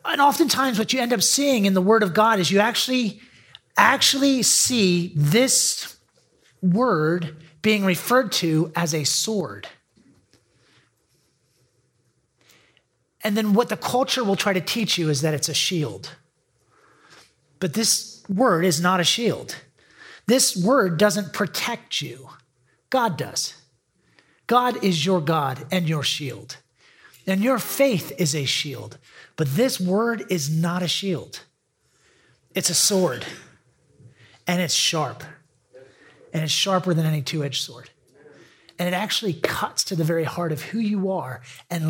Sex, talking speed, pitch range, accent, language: male, 145 wpm, 155-215 Hz, American, English